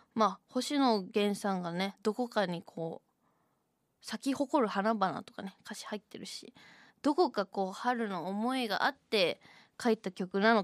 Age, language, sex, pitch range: 20-39, Japanese, female, 195-245 Hz